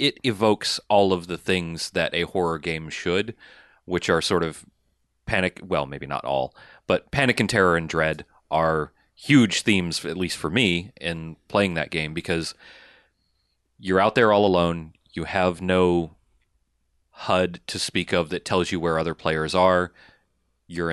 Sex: male